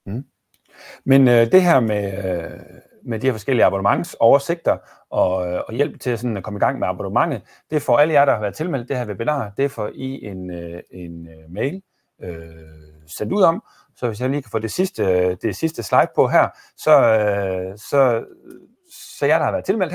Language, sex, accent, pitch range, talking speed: Danish, male, native, 85-130 Hz, 205 wpm